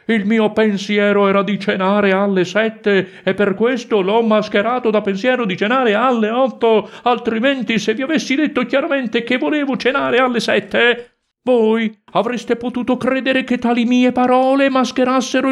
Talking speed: 150 wpm